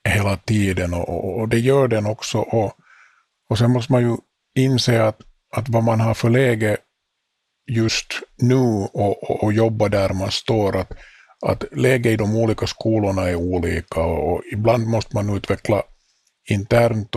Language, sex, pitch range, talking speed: Finnish, male, 95-115 Hz, 170 wpm